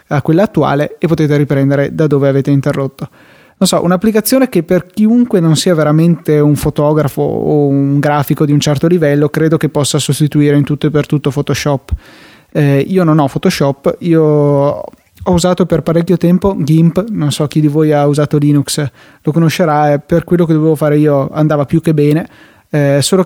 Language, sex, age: Italian, male, 20-39